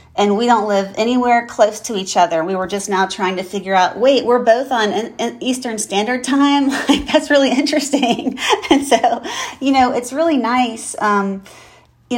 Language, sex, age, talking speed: English, female, 40-59, 175 wpm